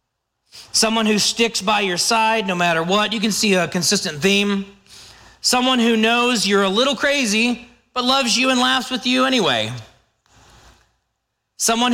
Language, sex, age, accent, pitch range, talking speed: English, male, 40-59, American, 175-235 Hz, 155 wpm